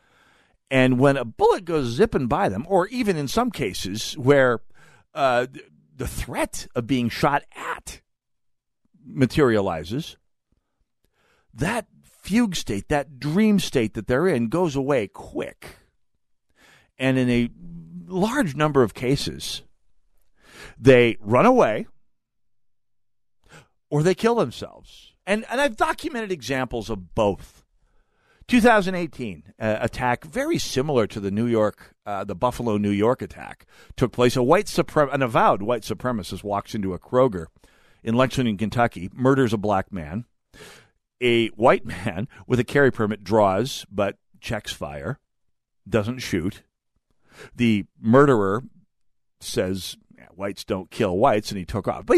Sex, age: male, 50-69